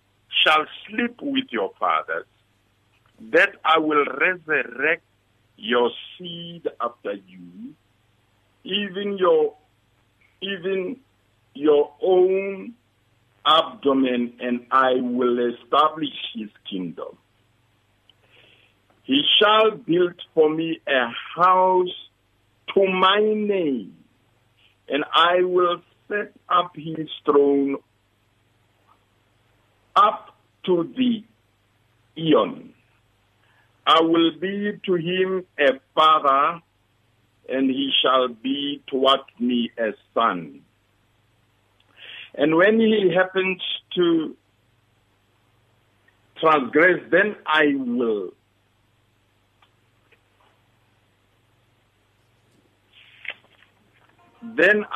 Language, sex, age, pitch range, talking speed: English, male, 60-79, 110-180 Hz, 80 wpm